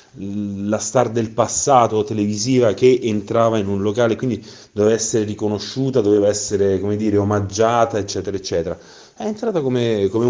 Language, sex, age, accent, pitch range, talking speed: Italian, male, 30-49, native, 90-115 Hz, 145 wpm